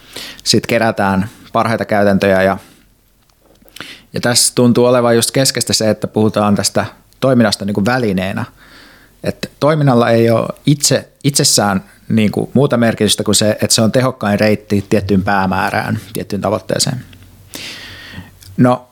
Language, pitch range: Finnish, 100-120 Hz